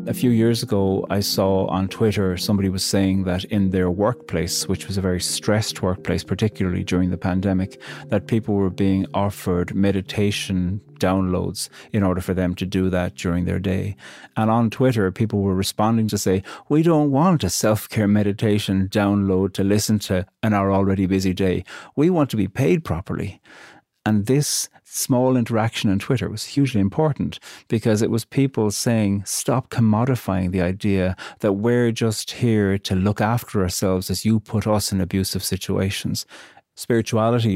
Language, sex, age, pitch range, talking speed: English, male, 30-49, 95-115 Hz, 170 wpm